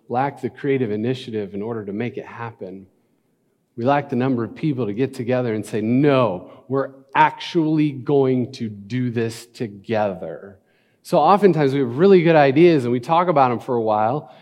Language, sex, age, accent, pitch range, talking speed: English, male, 40-59, American, 115-150 Hz, 185 wpm